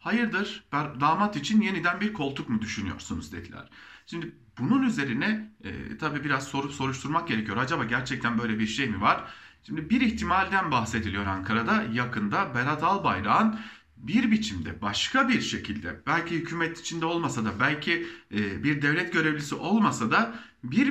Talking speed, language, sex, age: 145 wpm, German, male, 40-59